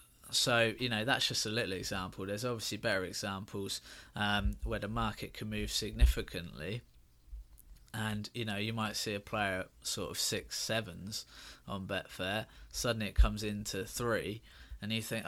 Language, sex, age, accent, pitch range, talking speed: English, male, 20-39, British, 100-120 Hz, 160 wpm